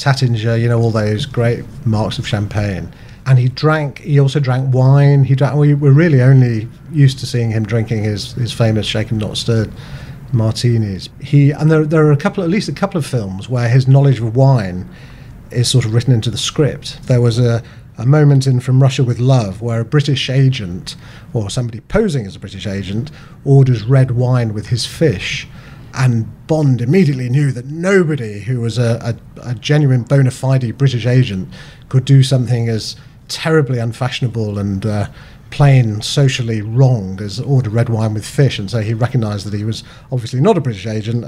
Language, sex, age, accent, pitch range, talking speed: English, male, 40-59, British, 115-135 Hz, 190 wpm